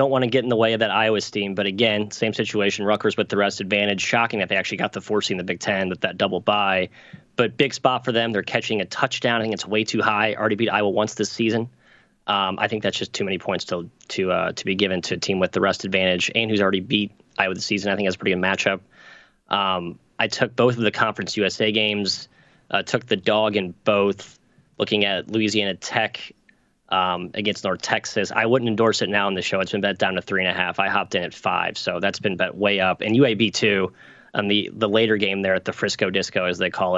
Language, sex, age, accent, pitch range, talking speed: English, male, 20-39, American, 95-110 Hz, 255 wpm